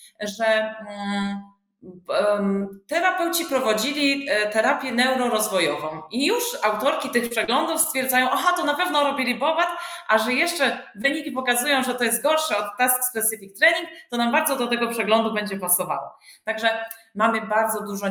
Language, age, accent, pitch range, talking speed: Polish, 30-49, native, 175-240 Hz, 140 wpm